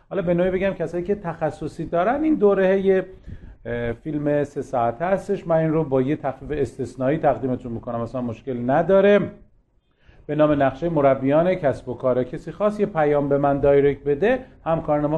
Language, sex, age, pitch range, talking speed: Persian, male, 40-59, 140-195 Hz, 175 wpm